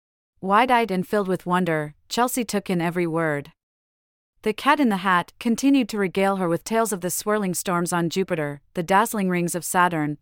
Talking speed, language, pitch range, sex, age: 190 wpm, English, 165-215 Hz, female, 30-49